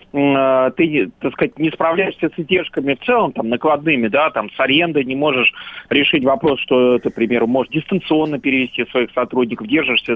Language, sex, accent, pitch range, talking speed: Russian, male, native, 135-195 Hz, 160 wpm